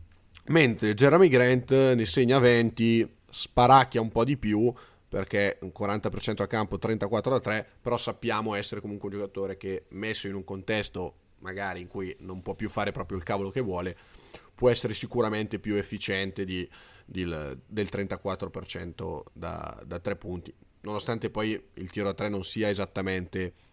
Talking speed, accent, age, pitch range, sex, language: 160 wpm, native, 30-49, 95-120 Hz, male, Italian